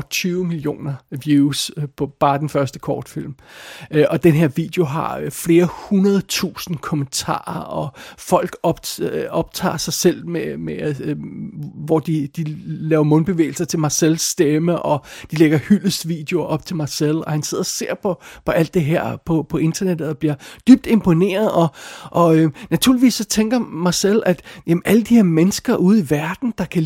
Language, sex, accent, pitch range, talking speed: Danish, male, native, 155-190 Hz, 165 wpm